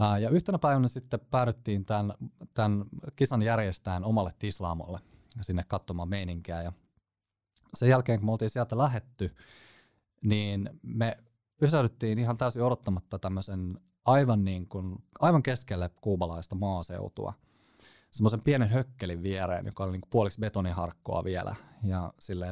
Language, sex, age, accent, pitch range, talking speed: Finnish, male, 30-49, native, 90-115 Hz, 130 wpm